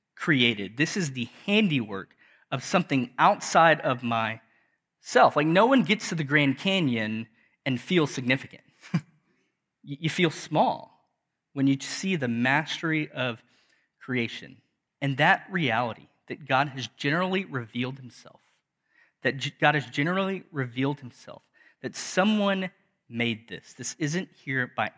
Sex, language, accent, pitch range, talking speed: male, English, American, 125-180 Hz, 130 wpm